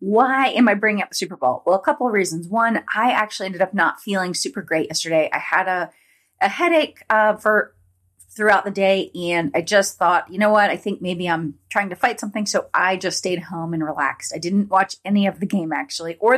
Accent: American